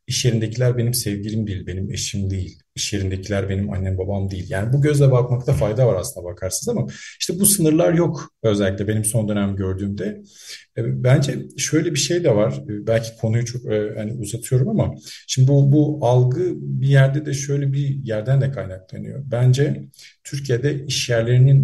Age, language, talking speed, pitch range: 50-69, Turkish, 165 wpm, 105-135 Hz